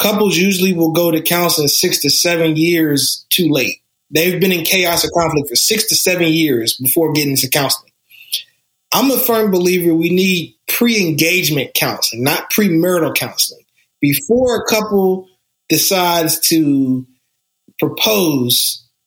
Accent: American